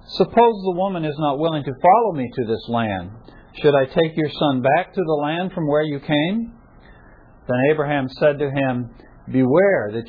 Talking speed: 190 wpm